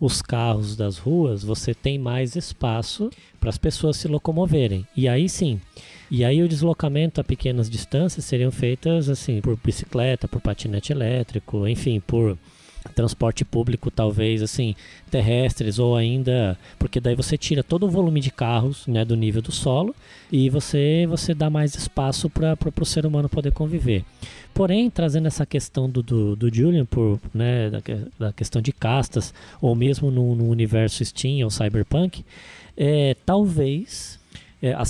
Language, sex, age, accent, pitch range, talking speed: Portuguese, male, 20-39, Brazilian, 115-165 Hz, 160 wpm